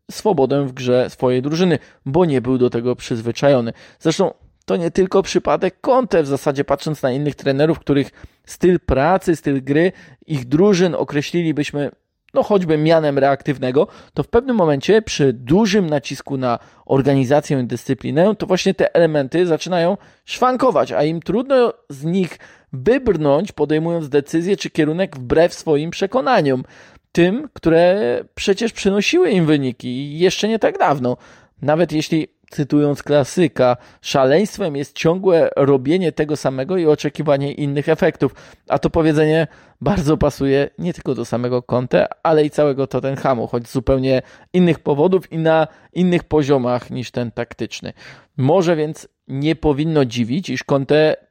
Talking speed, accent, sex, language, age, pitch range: 140 wpm, native, male, Polish, 20-39, 135-175 Hz